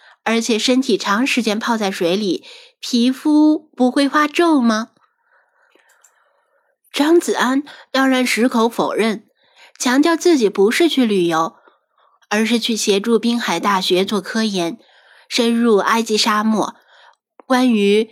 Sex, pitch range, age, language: female, 215-265 Hz, 20-39, Chinese